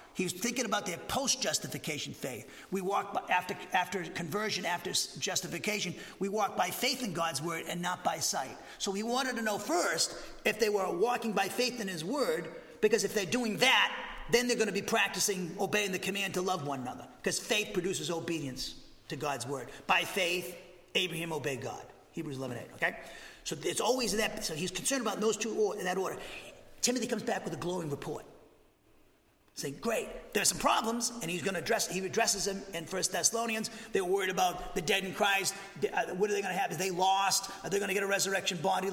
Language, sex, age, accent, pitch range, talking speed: English, male, 40-59, American, 180-230 Hz, 210 wpm